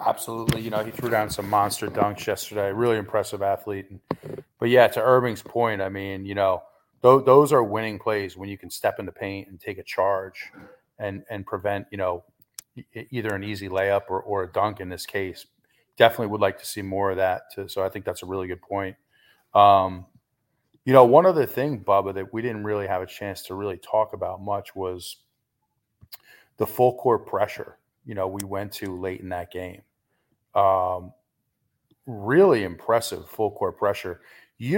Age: 30-49